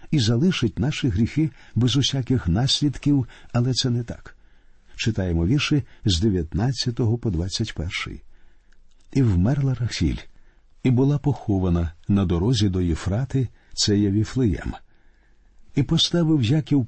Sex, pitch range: male, 100-135 Hz